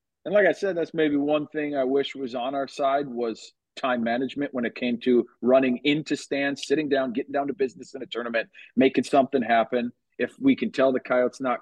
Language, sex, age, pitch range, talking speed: English, male, 40-59, 120-140 Hz, 220 wpm